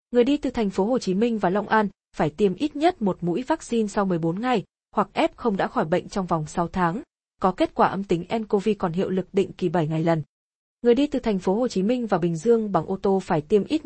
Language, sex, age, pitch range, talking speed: Vietnamese, female, 20-39, 180-235 Hz, 270 wpm